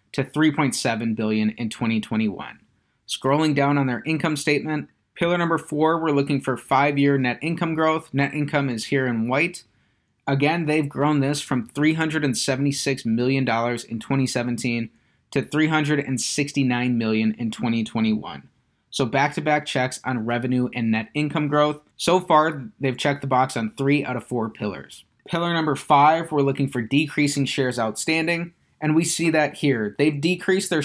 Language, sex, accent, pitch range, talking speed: English, male, American, 125-150 Hz, 155 wpm